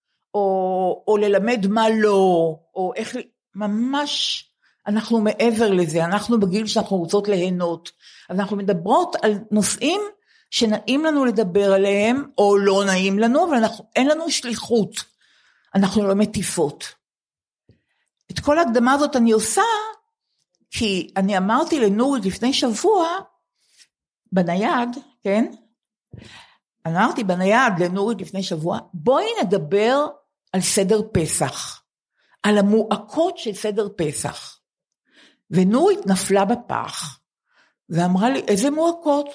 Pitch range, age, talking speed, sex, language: 195-275 Hz, 50-69, 110 wpm, female, Hebrew